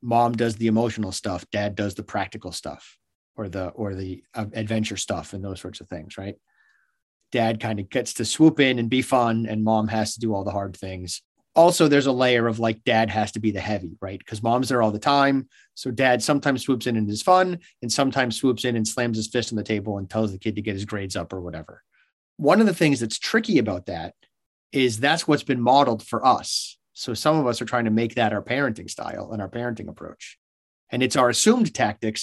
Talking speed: 235 wpm